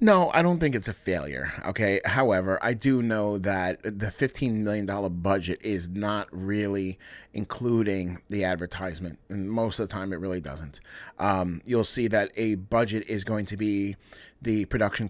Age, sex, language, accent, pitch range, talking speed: 30-49, male, English, American, 95-115 Hz, 175 wpm